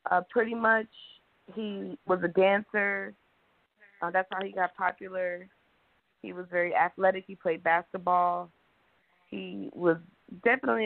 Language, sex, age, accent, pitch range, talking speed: English, female, 20-39, American, 175-200 Hz, 125 wpm